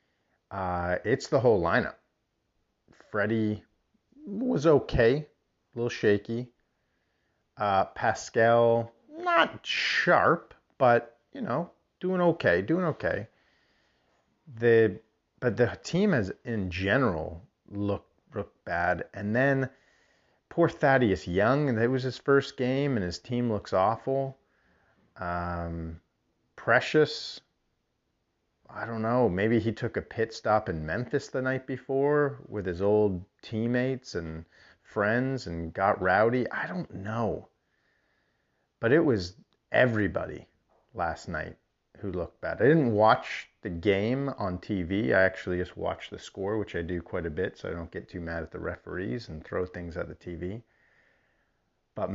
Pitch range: 90-130 Hz